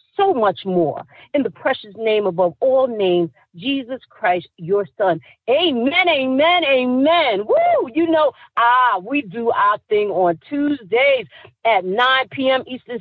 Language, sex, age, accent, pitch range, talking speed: English, female, 50-69, American, 195-320 Hz, 145 wpm